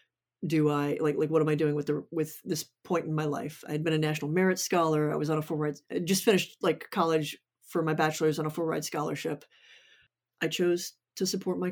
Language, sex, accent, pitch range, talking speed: English, female, American, 155-185 Hz, 240 wpm